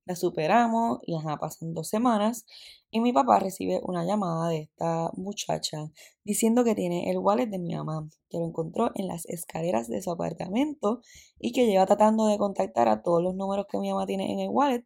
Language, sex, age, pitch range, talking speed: Spanish, female, 10-29, 155-195 Hz, 200 wpm